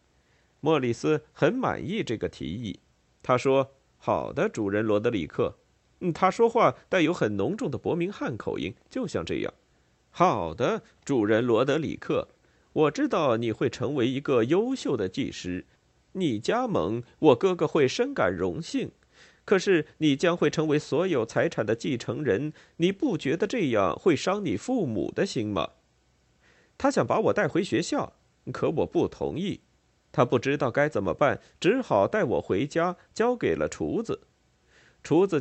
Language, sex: Chinese, male